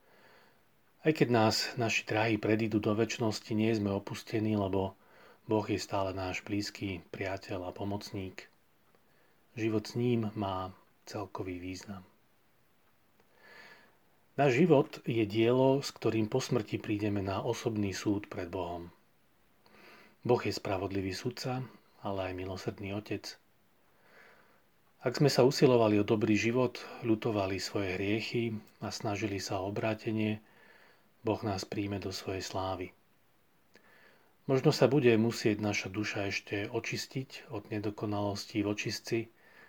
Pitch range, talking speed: 100-115 Hz, 120 wpm